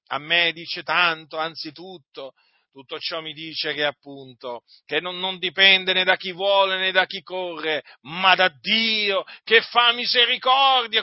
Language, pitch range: Italian, 155-190 Hz